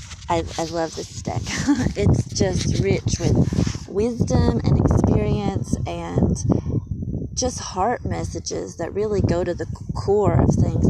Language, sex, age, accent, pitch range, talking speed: English, female, 20-39, American, 170-215 Hz, 130 wpm